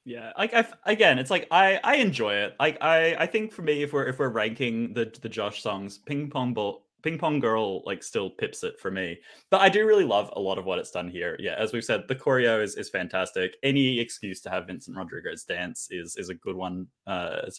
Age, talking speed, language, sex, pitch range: 20-39, 245 wpm, English, male, 110-165 Hz